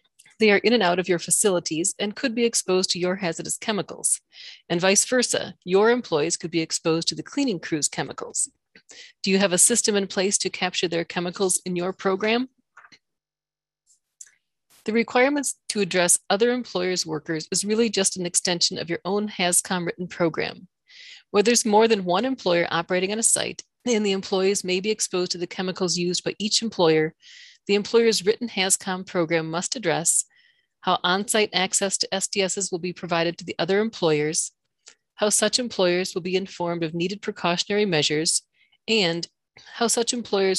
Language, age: English, 40-59